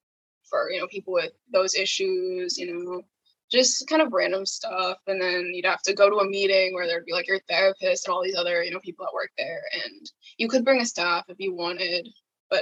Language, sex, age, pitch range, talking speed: English, female, 10-29, 190-285 Hz, 235 wpm